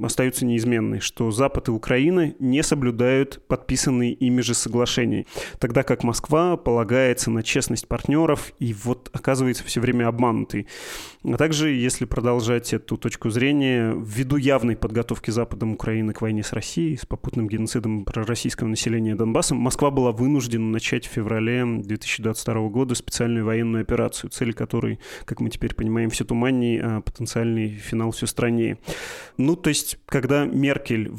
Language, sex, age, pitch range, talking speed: Russian, male, 30-49, 115-130 Hz, 145 wpm